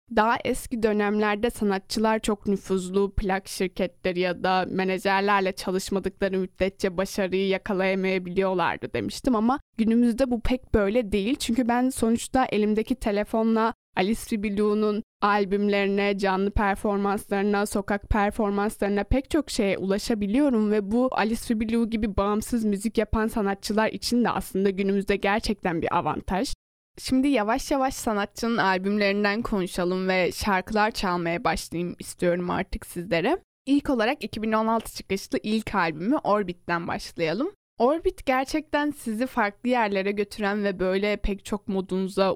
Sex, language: female, Turkish